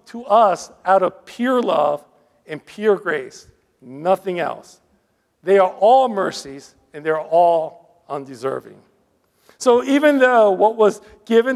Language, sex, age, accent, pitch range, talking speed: English, male, 50-69, American, 185-245 Hz, 130 wpm